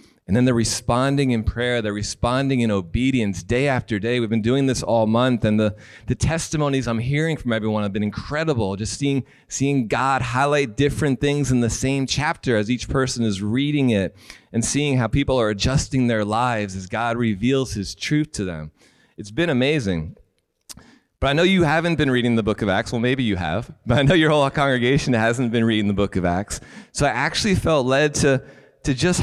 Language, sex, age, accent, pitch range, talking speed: English, male, 30-49, American, 115-145 Hz, 205 wpm